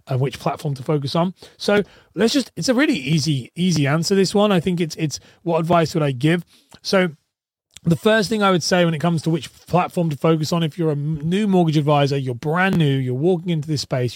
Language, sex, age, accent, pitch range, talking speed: English, male, 30-49, British, 140-175 Hz, 235 wpm